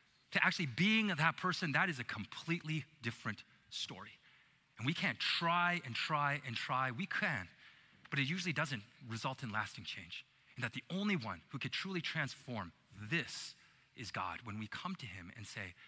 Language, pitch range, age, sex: English, 120-165 Hz, 30-49, male